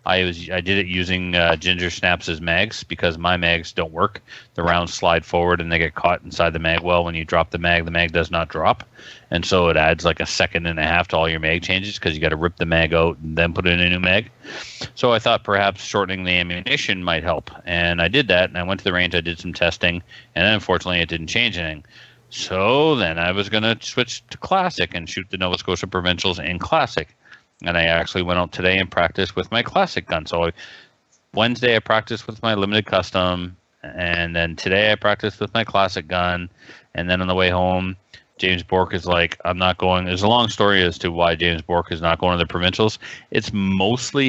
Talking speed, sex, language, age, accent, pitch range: 235 wpm, male, English, 40-59, American, 85-95 Hz